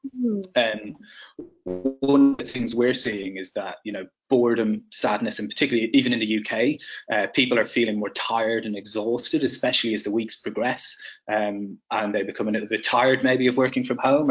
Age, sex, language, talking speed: 20-39, male, English, 195 wpm